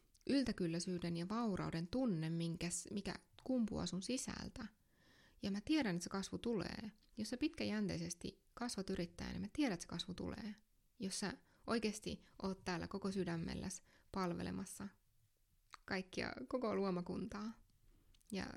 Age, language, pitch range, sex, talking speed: 20-39, English, 175-210 Hz, female, 130 wpm